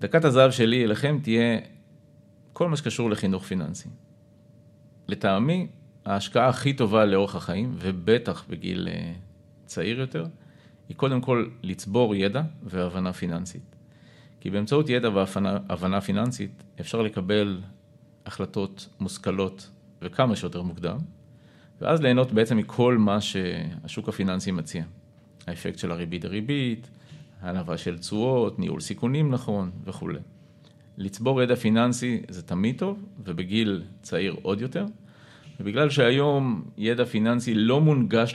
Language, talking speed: Hebrew, 115 wpm